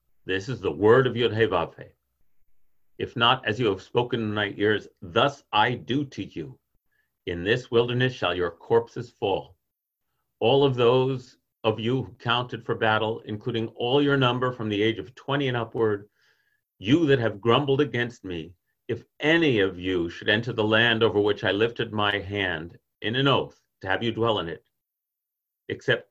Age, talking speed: 40-59, 175 wpm